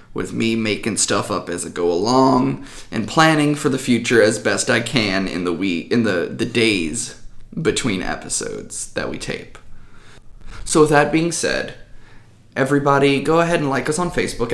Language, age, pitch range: English, 20-39, 110-145 Hz